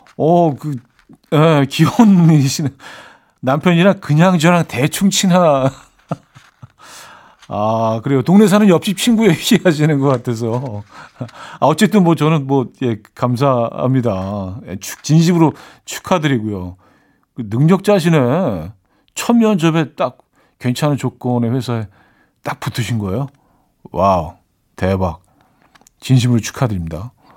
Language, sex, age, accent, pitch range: Korean, male, 50-69, native, 105-155 Hz